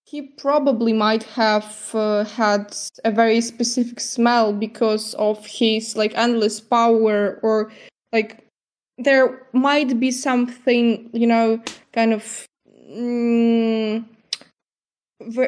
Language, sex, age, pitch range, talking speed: German, female, 10-29, 210-235 Hz, 105 wpm